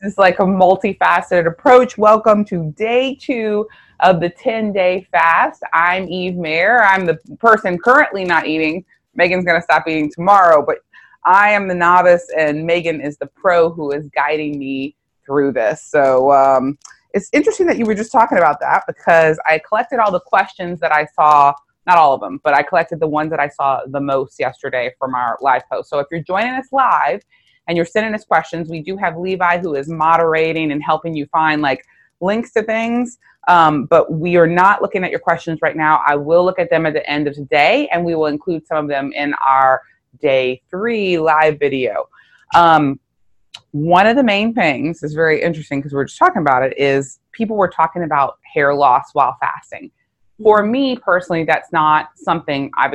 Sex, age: female, 20-39